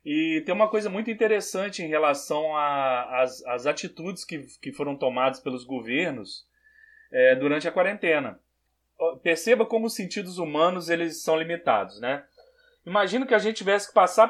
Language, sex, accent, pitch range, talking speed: Portuguese, male, Brazilian, 150-215 Hz, 145 wpm